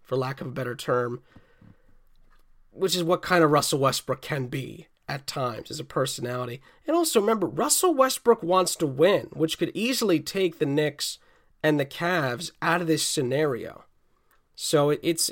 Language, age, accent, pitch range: English, 30-49, American, 145-185 Hz